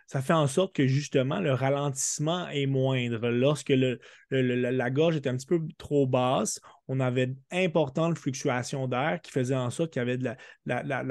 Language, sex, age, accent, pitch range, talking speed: French, male, 20-39, Canadian, 125-150 Hz, 190 wpm